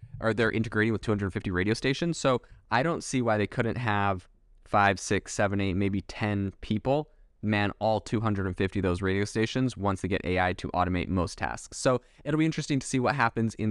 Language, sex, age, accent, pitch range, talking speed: English, male, 20-39, American, 95-115 Hz, 200 wpm